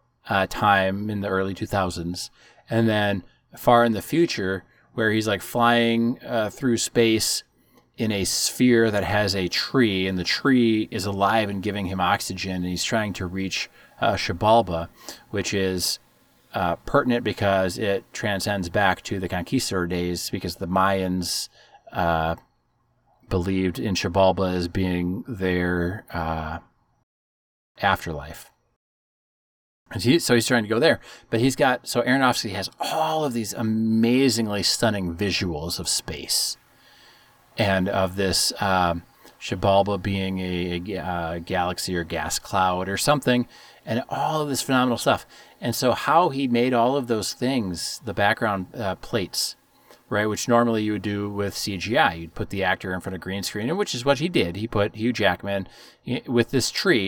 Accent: American